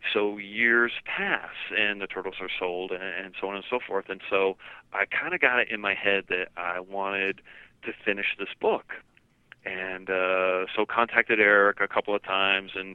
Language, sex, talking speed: English, male, 195 wpm